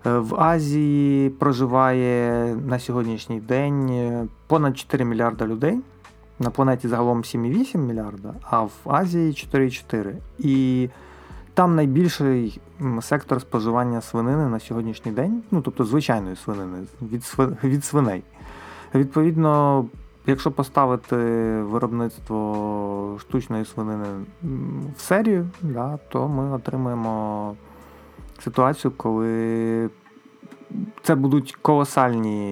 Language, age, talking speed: Ukrainian, 30-49, 100 wpm